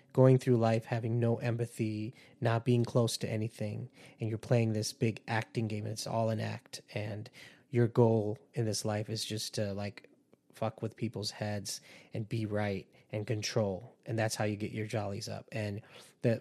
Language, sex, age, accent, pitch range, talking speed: English, male, 20-39, American, 110-130 Hz, 190 wpm